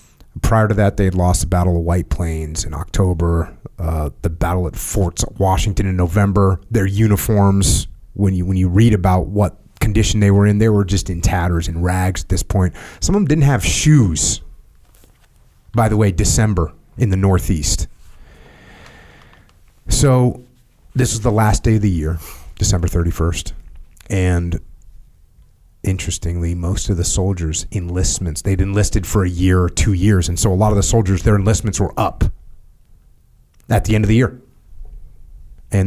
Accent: American